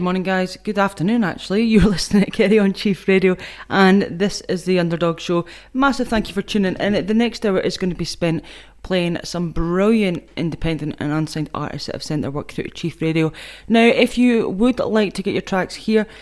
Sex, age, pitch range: female, 20-39, 155-195 Hz